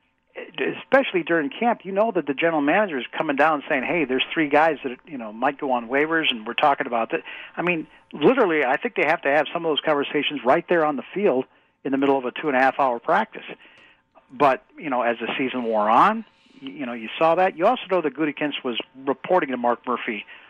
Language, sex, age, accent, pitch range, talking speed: English, male, 50-69, American, 130-165 Hz, 225 wpm